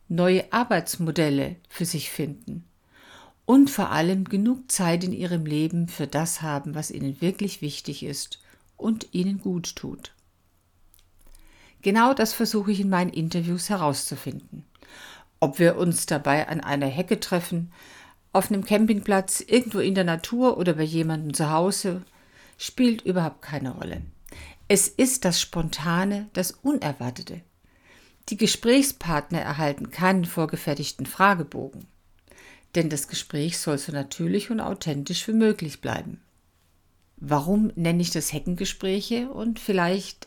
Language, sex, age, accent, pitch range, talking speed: German, female, 50-69, German, 150-200 Hz, 130 wpm